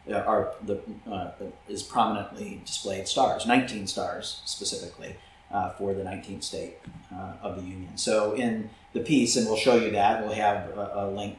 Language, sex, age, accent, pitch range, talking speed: English, male, 30-49, American, 100-115 Hz, 175 wpm